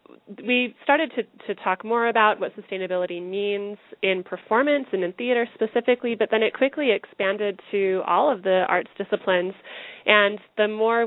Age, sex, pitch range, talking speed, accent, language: 30-49, female, 180-220 Hz, 165 wpm, American, English